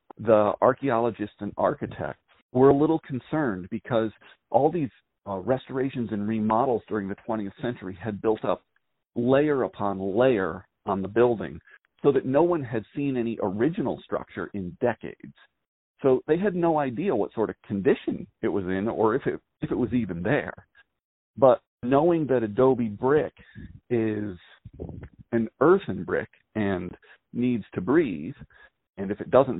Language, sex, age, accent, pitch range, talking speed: English, male, 40-59, American, 100-125 Hz, 150 wpm